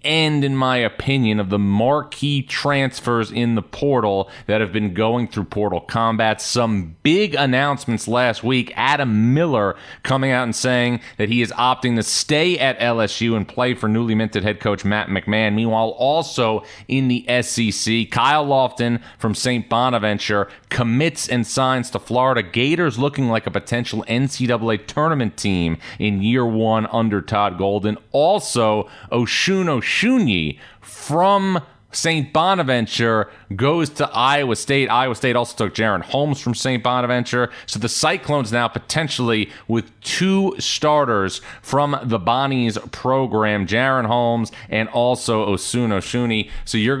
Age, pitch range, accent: 30-49, 110-130 Hz, American